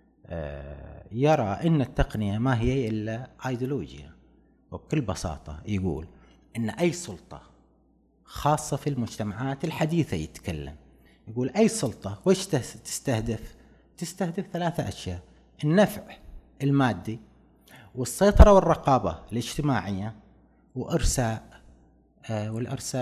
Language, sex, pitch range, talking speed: Arabic, male, 110-175 Hz, 85 wpm